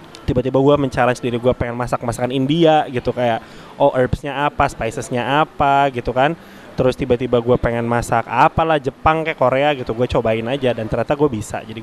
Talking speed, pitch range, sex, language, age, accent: 185 wpm, 115-140 Hz, male, Indonesian, 20-39, native